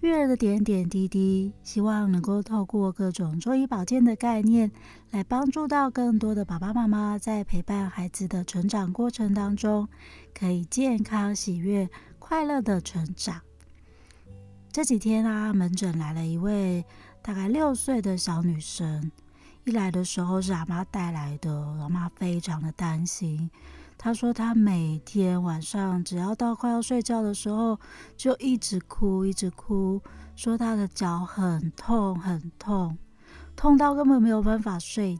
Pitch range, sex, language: 175-220 Hz, female, Chinese